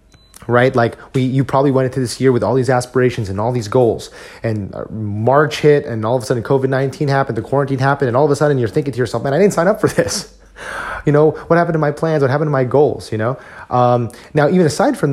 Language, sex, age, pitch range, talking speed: English, male, 30-49, 120-155 Hz, 260 wpm